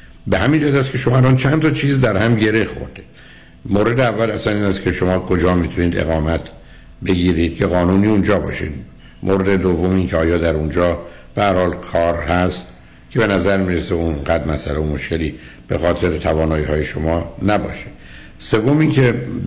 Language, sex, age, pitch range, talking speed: Persian, male, 60-79, 80-95 Hz, 165 wpm